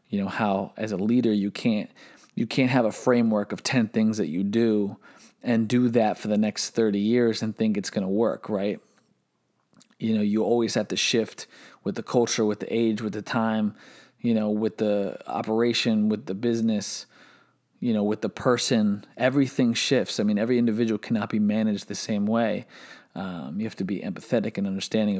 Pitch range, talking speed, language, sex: 105-125 Hz, 200 wpm, English, male